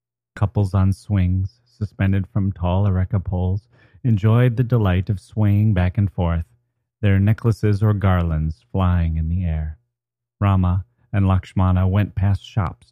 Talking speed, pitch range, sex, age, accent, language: 140 wpm, 90-120 Hz, male, 30-49, American, English